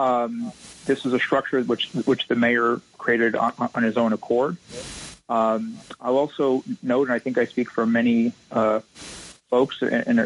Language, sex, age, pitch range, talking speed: English, male, 40-59, 115-130 Hz, 175 wpm